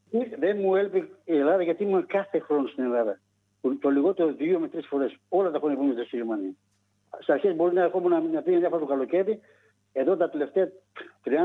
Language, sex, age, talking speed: Greek, male, 60-79, 195 wpm